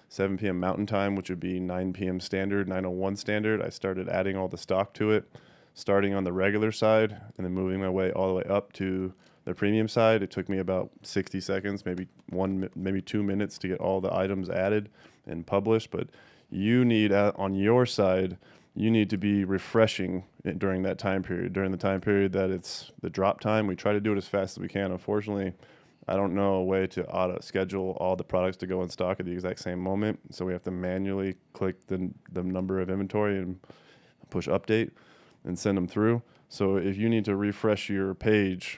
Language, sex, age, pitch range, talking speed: English, male, 20-39, 95-100 Hz, 215 wpm